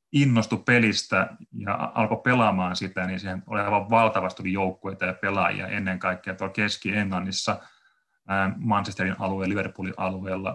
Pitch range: 95-110 Hz